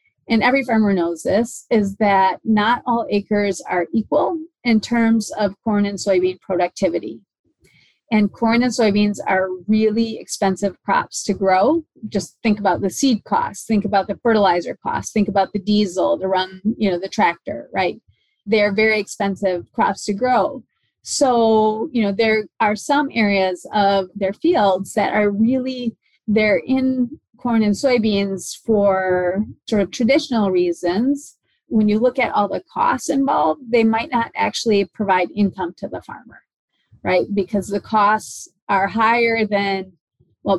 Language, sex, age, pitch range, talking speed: English, female, 30-49, 195-230 Hz, 155 wpm